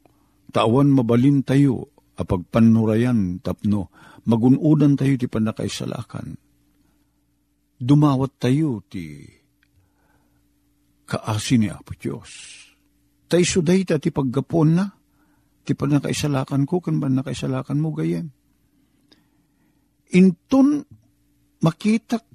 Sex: male